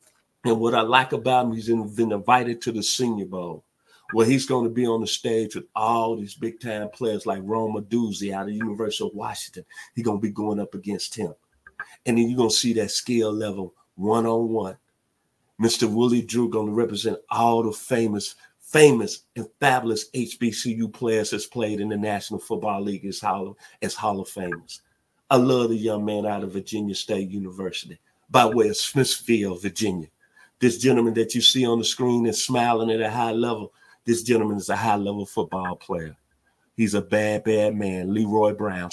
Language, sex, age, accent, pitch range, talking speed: English, male, 50-69, American, 105-120 Hz, 190 wpm